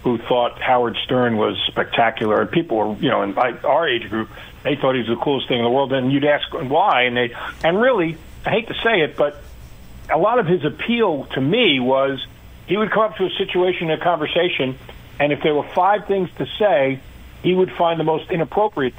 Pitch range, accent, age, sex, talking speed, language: 125-180 Hz, American, 50-69, male, 220 wpm, English